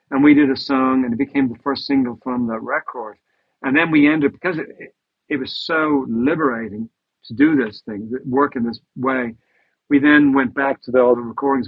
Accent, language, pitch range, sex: American, English, 120-145 Hz, male